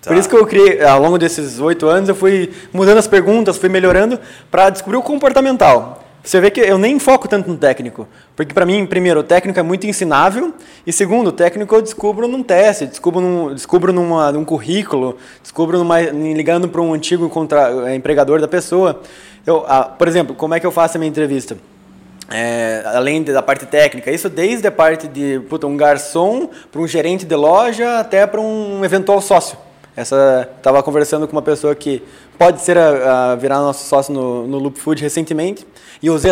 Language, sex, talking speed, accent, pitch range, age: Portuguese, male, 190 wpm, Brazilian, 150-195 Hz, 20-39